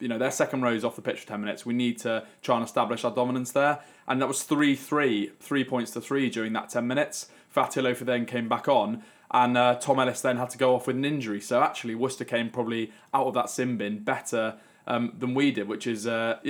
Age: 20-39